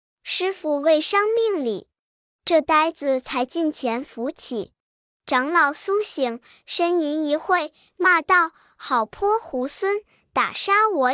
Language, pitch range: Chinese, 275-370 Hz